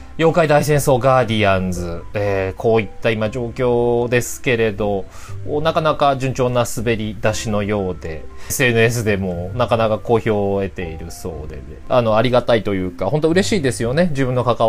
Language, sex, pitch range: Japanese, male, 100-150 Hz